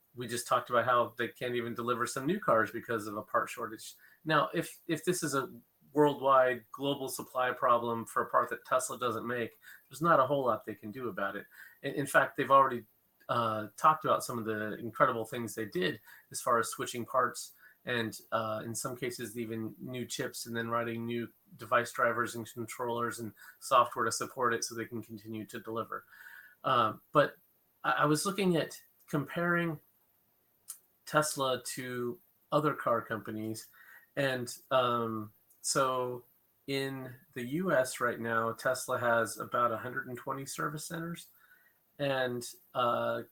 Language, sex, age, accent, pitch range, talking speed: English, male, 30-49, American, 115-135 Hz, 165 wpm